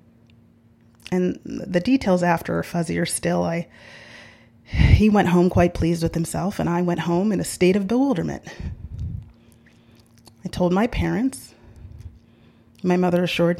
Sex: female